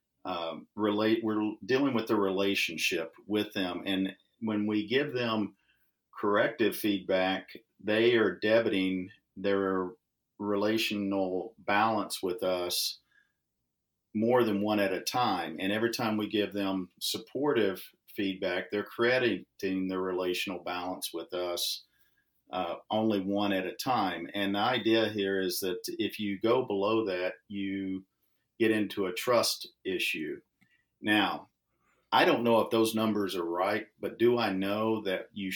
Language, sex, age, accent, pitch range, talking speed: English, male, 50-69, American, 95-110 Hz, 140 wpm